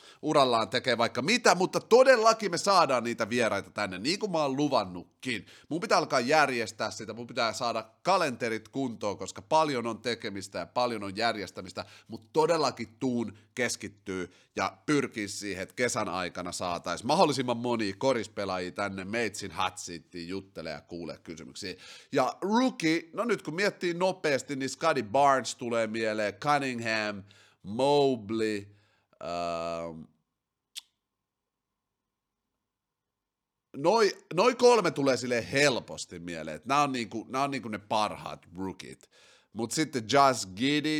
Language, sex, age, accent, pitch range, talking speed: Finnish, male, 30-49, native, 105-150 Hz, 130 wpm